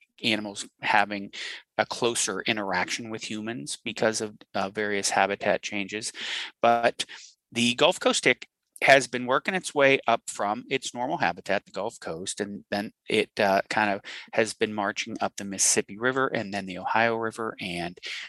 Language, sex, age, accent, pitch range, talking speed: English, male, 30-49, American, 100-145 Hz, 165 wpm